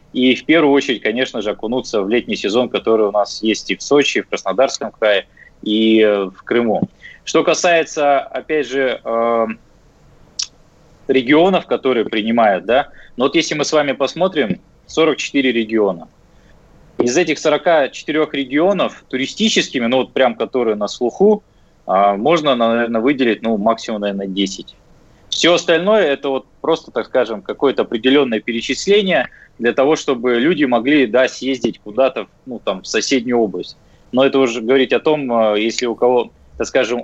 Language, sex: Russian, male